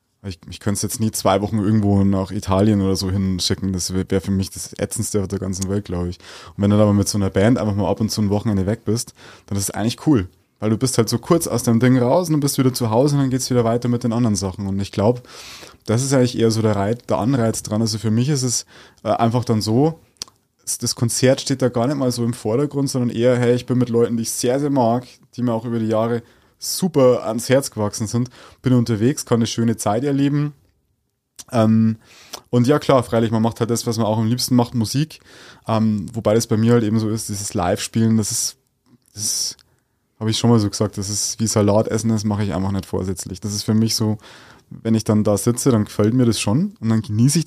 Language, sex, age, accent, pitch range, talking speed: German, male, 20-39, German, 105-125 Hz, 255 wpm